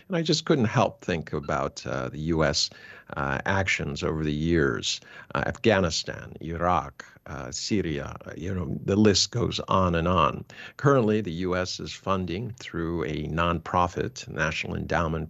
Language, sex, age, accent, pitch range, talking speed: English, male, 50-69, American, 80-100 Hz, 155 wpm